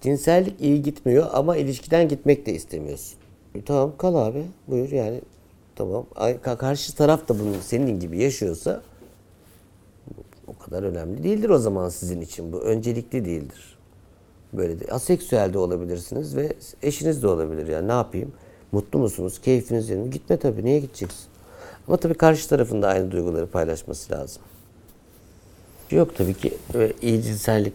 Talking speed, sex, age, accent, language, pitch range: 145 wpm, male, 60-79, native, Turkish, 95-125 Hz